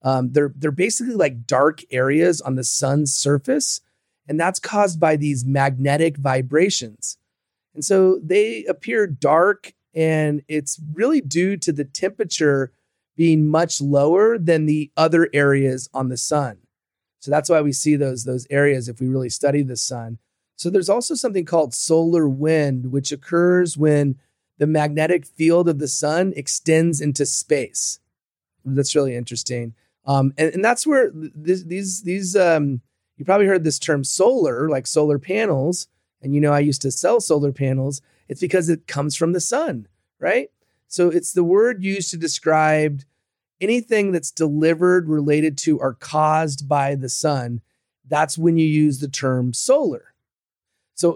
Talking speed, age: 160 wpm, 30-49